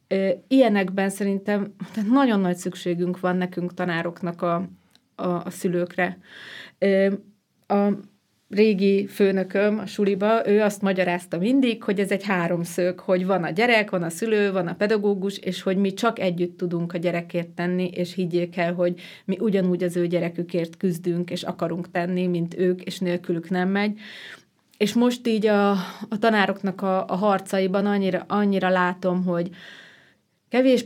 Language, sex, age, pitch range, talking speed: Hungarian, female, 30-49, 180-200 Hz, 150 wpm